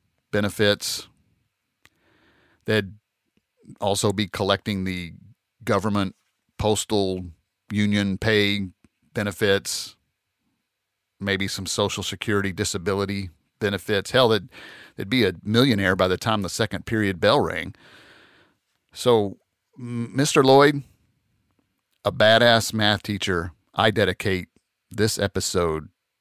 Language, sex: English, male